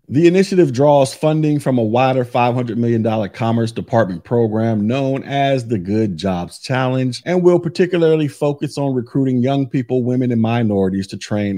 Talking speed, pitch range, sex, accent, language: 160 wpm, 110-135 Hz, male, American, English